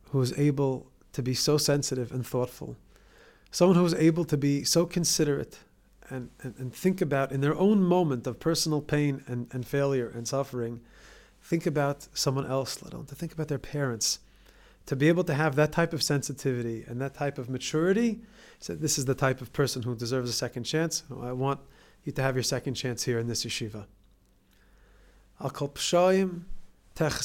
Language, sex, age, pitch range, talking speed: English, male, 30-49, 135-185 Hz, 185 wpm